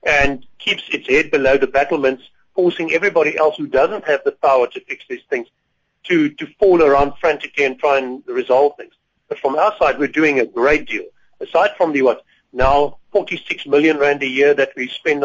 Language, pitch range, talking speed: English, 135-180 Hz, 200 wpm